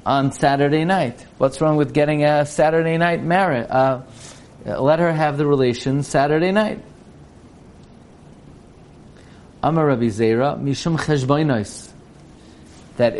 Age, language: 40-59, English